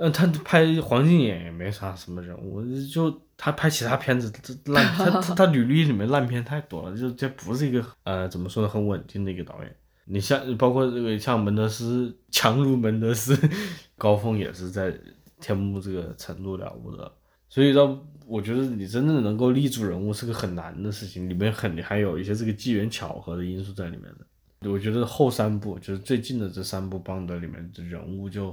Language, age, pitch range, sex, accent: Chinese, 20-39, 100-125 Hz, male, native